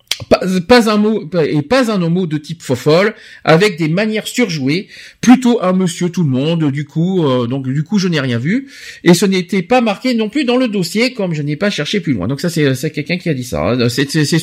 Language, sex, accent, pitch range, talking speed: French, male, French, 145-210 Hz, 250 wpm